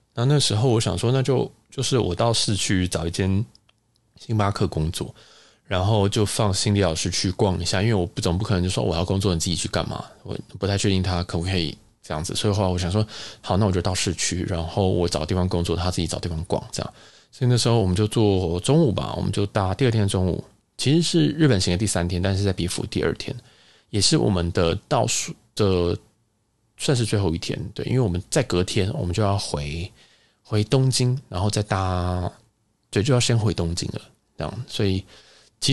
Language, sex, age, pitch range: Chinese, male, 20-39, 90-115 Hz